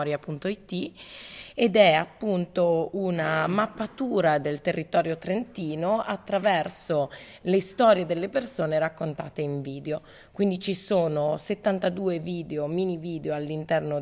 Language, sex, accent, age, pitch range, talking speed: Italian, female, native, 20-39, 155-190 Hz, 105 wpm